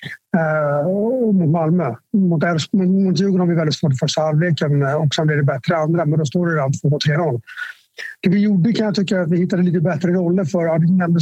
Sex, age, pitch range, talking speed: male, 60-79, 155-185 Hz, 230 wpm